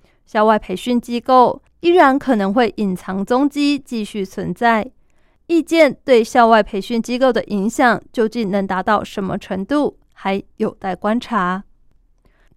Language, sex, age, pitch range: Chinese, female, 20-39, 205-250 Hz